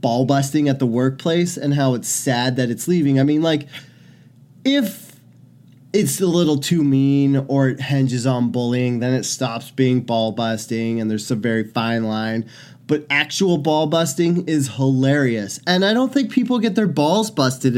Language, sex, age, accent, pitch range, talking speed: English, male, 20-39, American, 115-140 Hz, 180 wpm